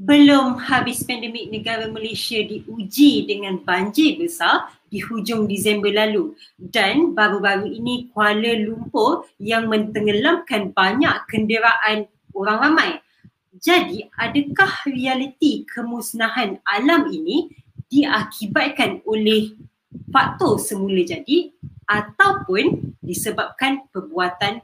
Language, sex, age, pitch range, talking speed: Malay, female, 30-49, 205-295 Hz, 95 wpm